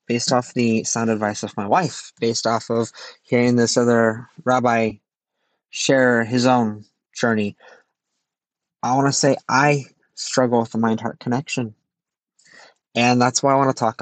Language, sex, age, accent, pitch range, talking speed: English, male, 20-39, American, 115-135 Hz, 155 wpm